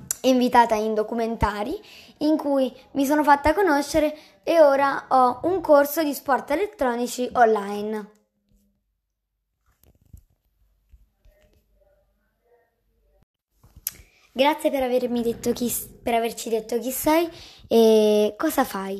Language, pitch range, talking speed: Italian, 215-280 Hz, 100 wpm